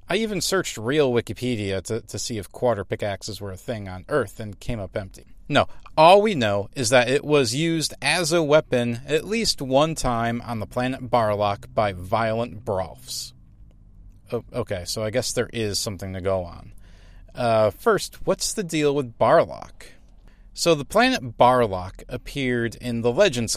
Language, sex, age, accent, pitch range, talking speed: English, male, 30-49, American, 100-130 Hz, 175 wpm